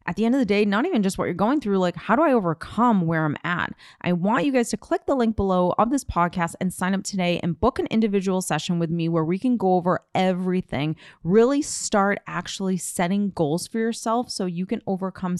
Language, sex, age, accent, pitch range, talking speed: English, female, 30-49, American, 160-205 Hz, 240 wpm